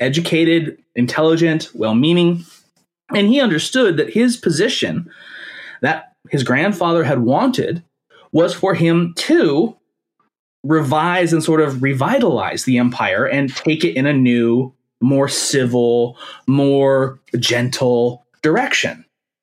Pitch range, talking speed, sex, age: 135-175 Hz, 110 wpm, male, 30-49